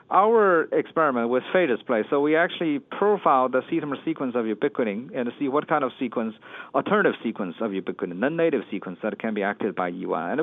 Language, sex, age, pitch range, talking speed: English, male, 50-69, 115-150 Hz, 195 wpm